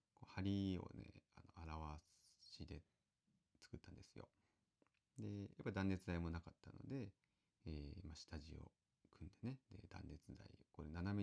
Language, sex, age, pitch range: Japanese, male, 30-49, 85-105 Hz